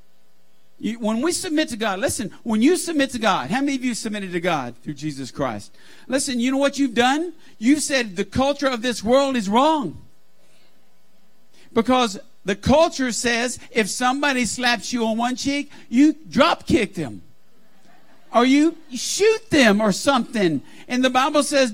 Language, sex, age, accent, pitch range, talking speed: English, male, 50-69, American, 220-295 Hz, 170 wpm